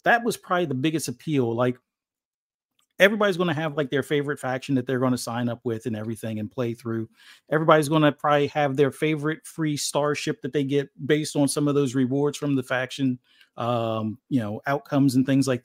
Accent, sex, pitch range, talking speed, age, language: American, male, 135-165 Hz, 210 wpm, 40-59, English